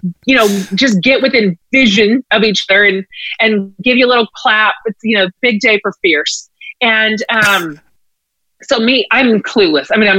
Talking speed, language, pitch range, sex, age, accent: 185 wpm, English, 210-280 Hz, female, 30-49, American